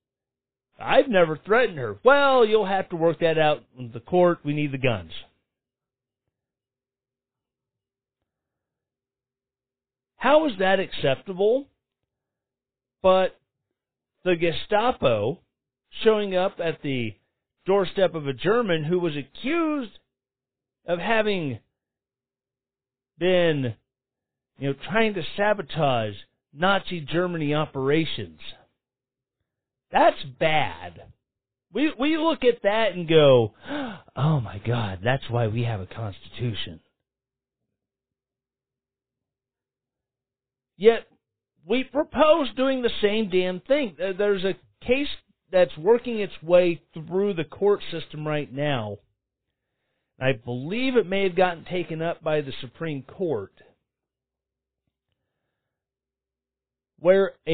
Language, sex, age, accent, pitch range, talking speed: English, male, 40-59, American, 130-195 Hz, 105 wpm